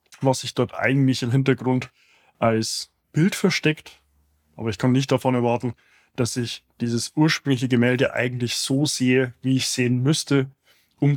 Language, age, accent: German, 20-39, German